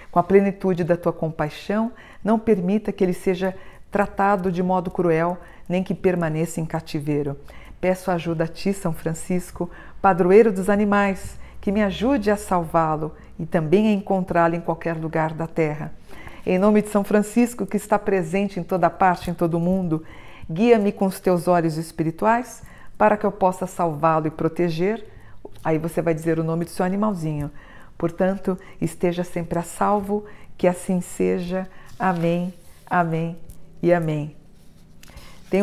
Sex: female